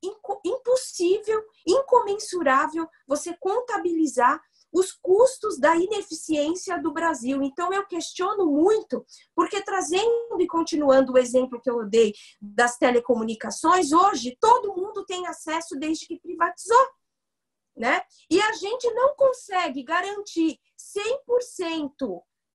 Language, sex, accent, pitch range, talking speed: Portuguese, female, Brazilian, 275-420 Hz, 110 wpm